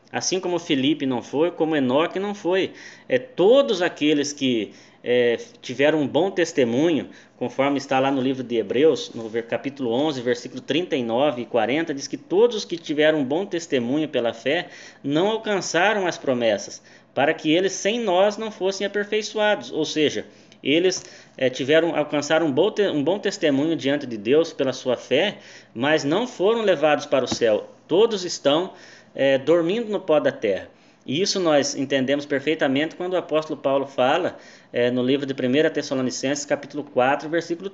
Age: 20-39